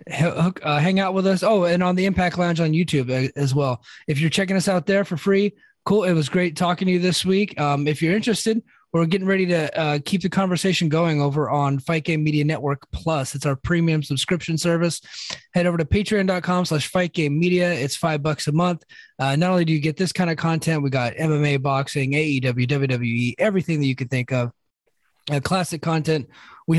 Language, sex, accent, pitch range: English, male, American, 135-180 Hz